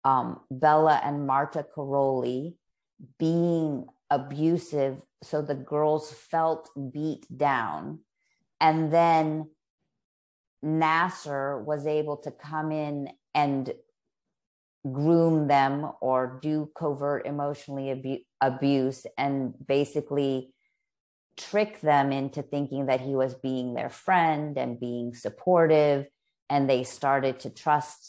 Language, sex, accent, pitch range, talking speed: English, female, American, 140-165 Hz, 105 wpm